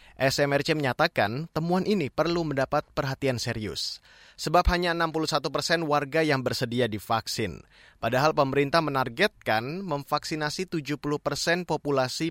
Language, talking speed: Indonesian, 110 wpm